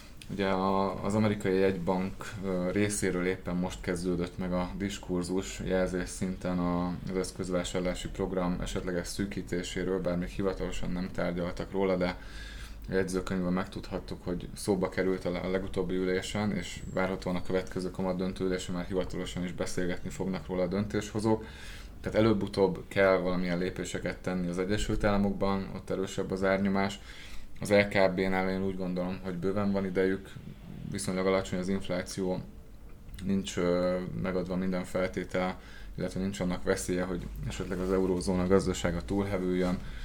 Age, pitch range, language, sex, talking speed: 20-39, 90-95 Hz, Hungarian, male, 130 wpm